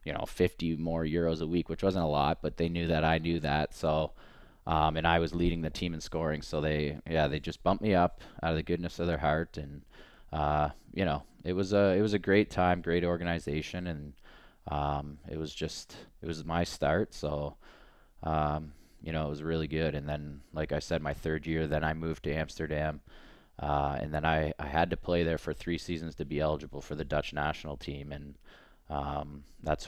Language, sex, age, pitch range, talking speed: English, male, 20-39, 75-85 Hz, 220 wpm